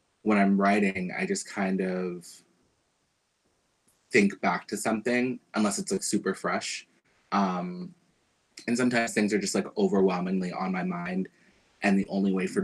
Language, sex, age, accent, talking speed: English, male, 20-39, American, 150 wpm